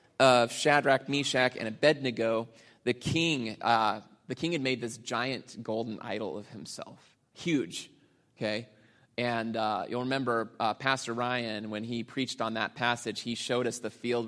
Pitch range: 115-135 Hz